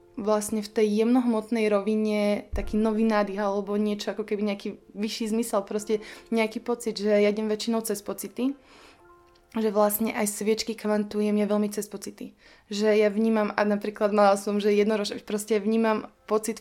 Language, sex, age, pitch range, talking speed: Slovak, female, 20-39, 205-220 Hz, 160 wpm